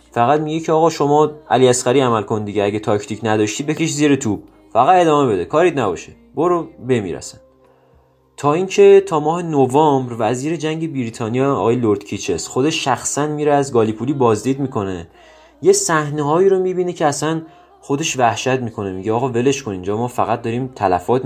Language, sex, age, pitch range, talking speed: Persian, male, 30-49, 110-155 Hz, 165 wpm